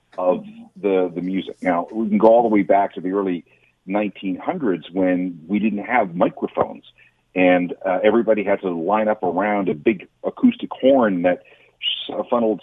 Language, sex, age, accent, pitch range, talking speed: English, male, 40-59, American, 90-135 Hz, 165 wpm